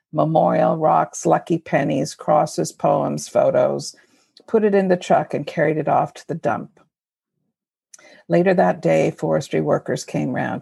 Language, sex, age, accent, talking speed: English, female, 50-69, American, 145 wpm